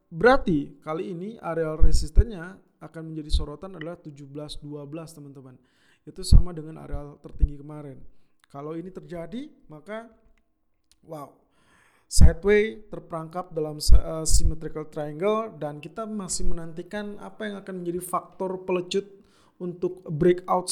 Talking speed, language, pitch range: 115 wpm, Indonesian, 150-185 Hz